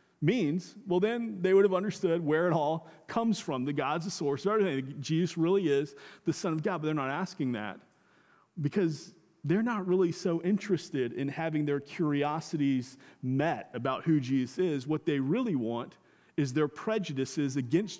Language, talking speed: English, 175 wpm